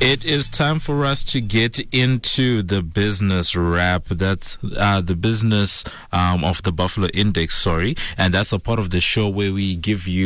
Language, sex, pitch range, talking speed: English, male, 85-110 Hz, 185 wpm